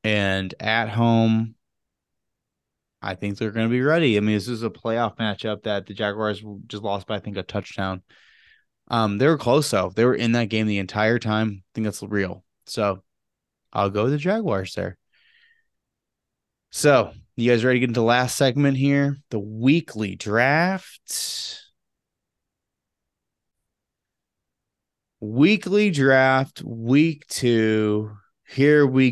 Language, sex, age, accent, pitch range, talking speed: English, male, 20-39, American, 105-125 Hz, 145 wpm